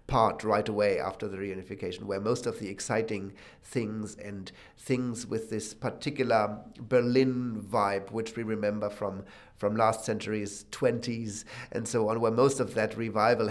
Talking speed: 155 wpm